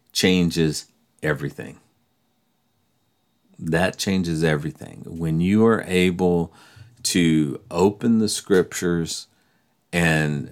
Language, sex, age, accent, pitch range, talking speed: English, male, 40-59, American, 85-120 Hz, 80 wpm